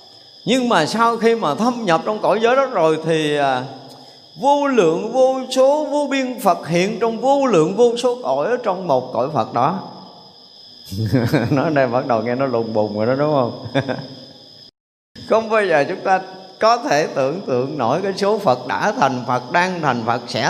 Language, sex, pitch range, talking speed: Vietnamese, male, 135-220 Hz, 195 wpm